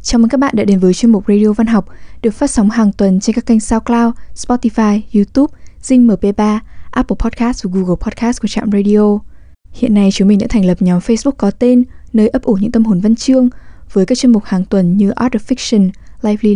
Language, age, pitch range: English, 10-29, 200-245 Hz